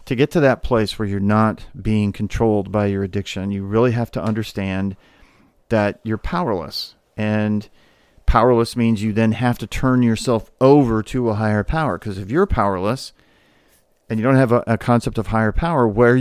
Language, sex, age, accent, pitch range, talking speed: English, male, 50-69, American, 100-125 Hz, 190 wpm